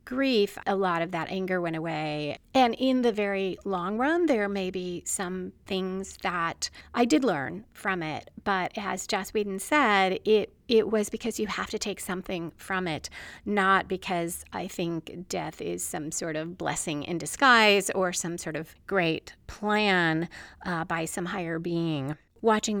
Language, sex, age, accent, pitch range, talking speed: English, female, 30-49, American, 180-220 Hz, 170 wpm